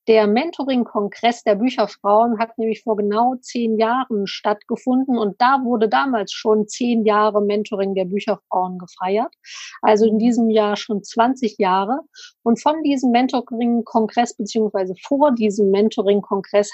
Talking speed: 135 wpm